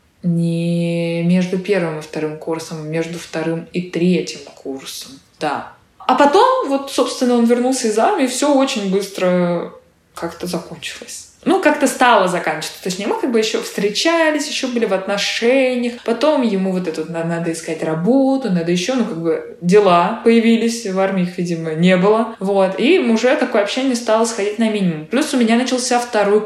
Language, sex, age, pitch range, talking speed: Russian, female, 20-39, 180-240 Hz, 170 wpm